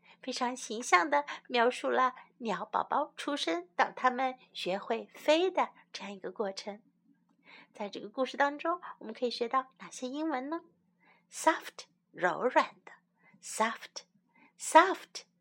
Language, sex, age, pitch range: Chinese, female, 60-79, 190-310 Hz